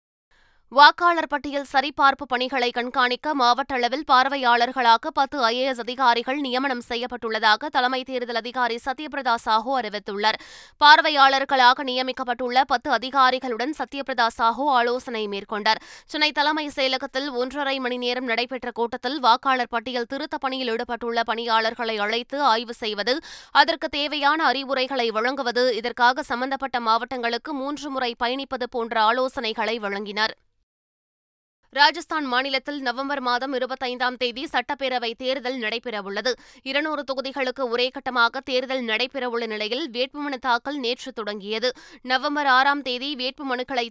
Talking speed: 105 wpm